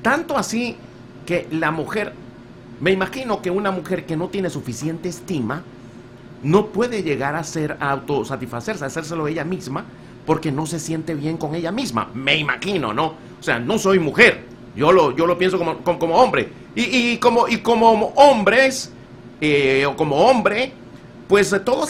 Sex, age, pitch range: male, 50-69, 135-205 Hz